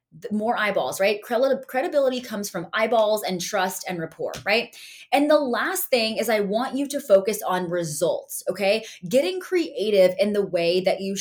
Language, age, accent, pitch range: English, 20-39, American, 185-245 Hz